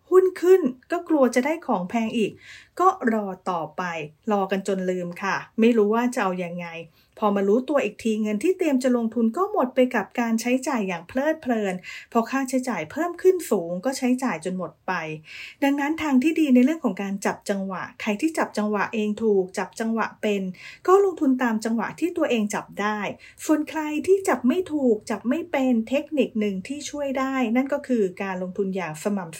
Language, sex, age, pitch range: English, female, 30-49, 205-280 Hz